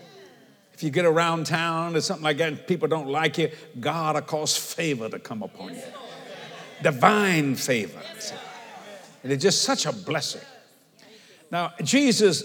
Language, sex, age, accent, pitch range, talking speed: English, male, 60-79, American, 170-225 Hz, 155 wpm